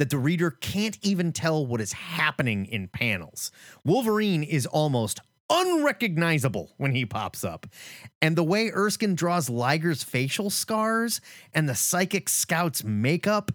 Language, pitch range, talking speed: English, 120-195 Hz, 140 wpm